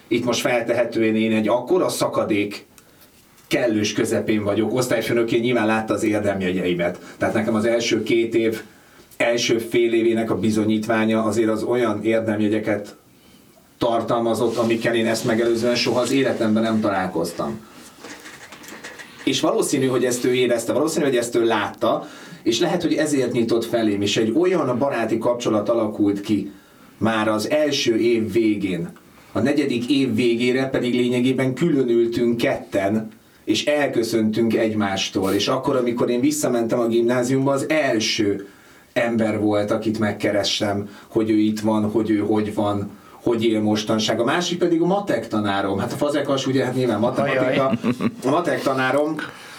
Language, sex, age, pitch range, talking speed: Hungarian, male, 30-49, 110-130 Hz, 150 wpm